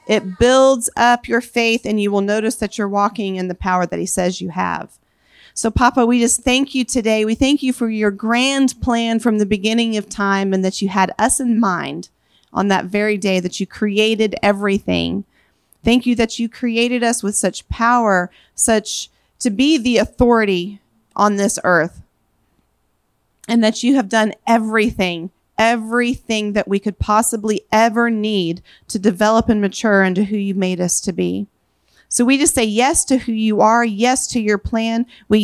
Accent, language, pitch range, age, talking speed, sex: American, English, 200-240 Hz, 40-59, 185 wpm, female